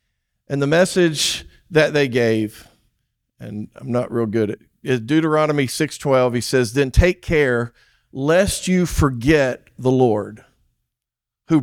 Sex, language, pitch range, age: male, English, 125-165 Hz, 50-69